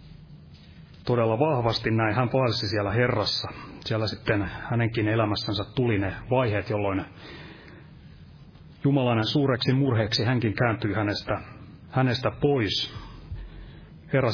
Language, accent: Finnish, native